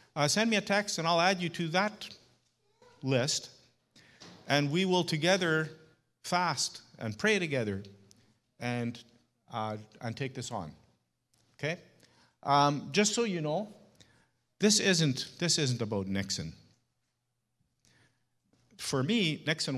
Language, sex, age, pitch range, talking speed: English, male, 50-69, 120-155 Hz, 125 wpm